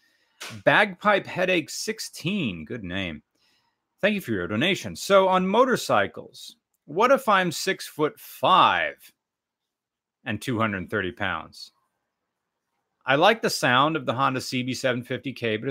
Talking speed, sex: 120 wpm, male